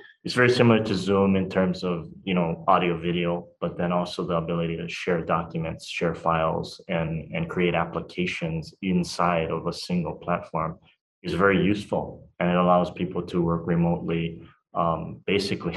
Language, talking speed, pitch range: English, 165 wpm, 85-95 Hz